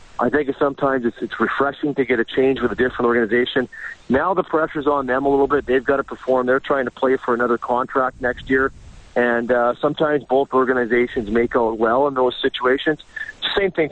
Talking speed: 205 wpm